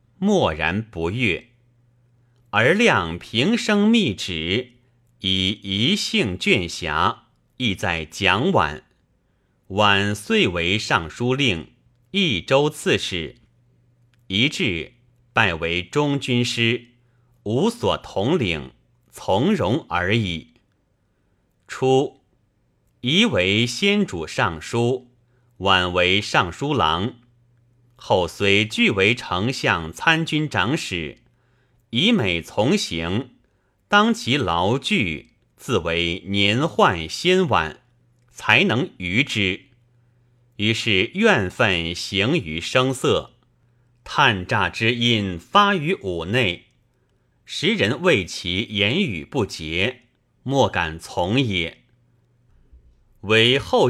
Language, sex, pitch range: Chinese, male, 100-125 Hz